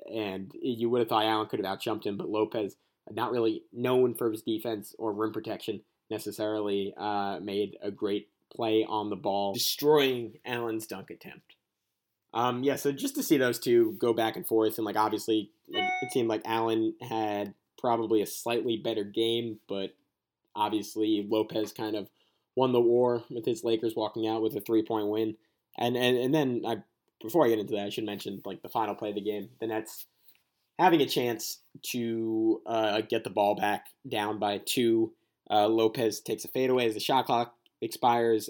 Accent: American